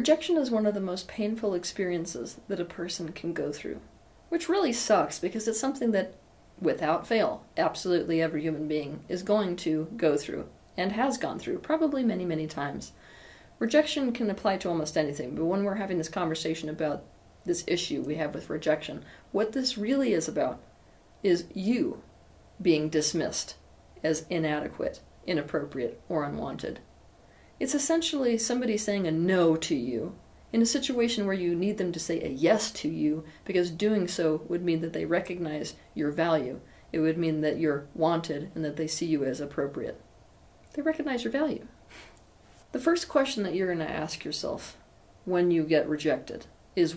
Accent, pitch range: American, 160-220 Hz